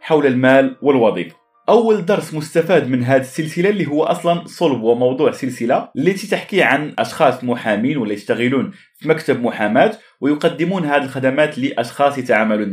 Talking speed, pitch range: 140 wpm, 130-170 Hz